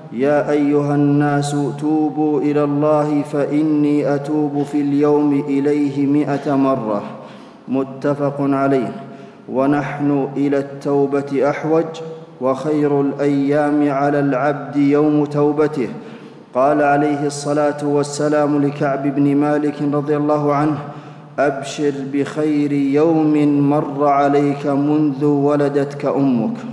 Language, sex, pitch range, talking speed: Arabic, male, 140-150 Hz, 95 wpm